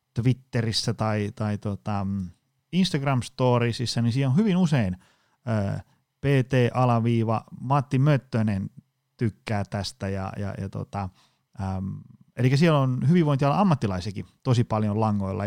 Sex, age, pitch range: male, 30-49, 105-130 Hz